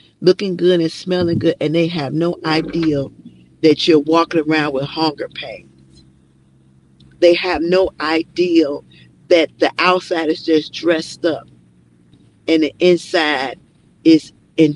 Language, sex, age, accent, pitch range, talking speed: English, female, 40-59, American, 155-200 Hz, 135 wpm